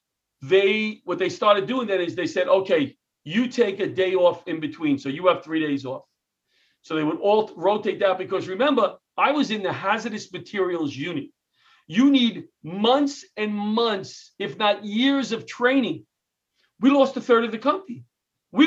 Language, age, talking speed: English, 40-59, 180 wpm